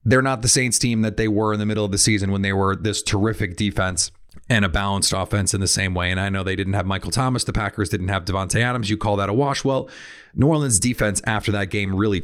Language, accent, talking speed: English, American, 270 wpm